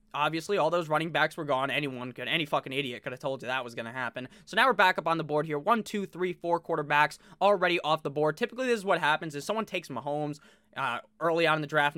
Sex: male